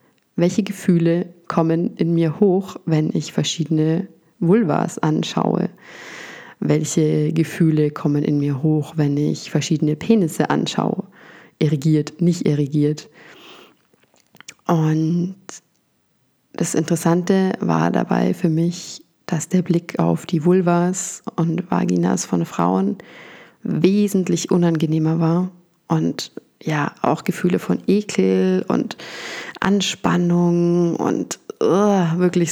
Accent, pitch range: German, 155-185 Hz